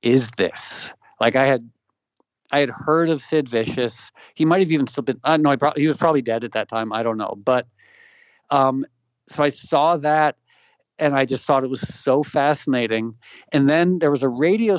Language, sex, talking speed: English, male, 215 wpm